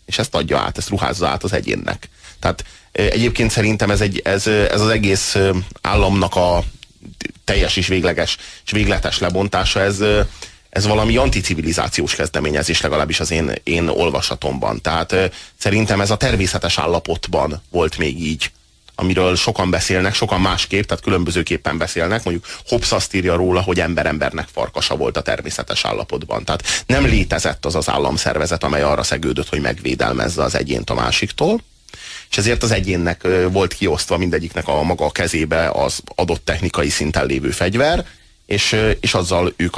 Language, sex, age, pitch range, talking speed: Hungarian, male, 30-49, 85-100 Hz, 150 wpm